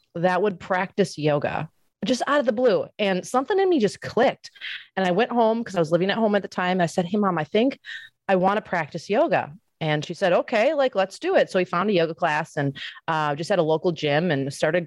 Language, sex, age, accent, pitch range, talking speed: English, female, 30-49, American, 155-195 Hz, 250 wpm